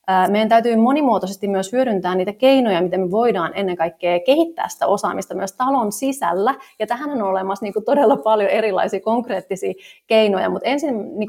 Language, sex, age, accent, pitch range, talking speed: Finnish, female, 30-49, native, 185-235 Hz, 155 wpm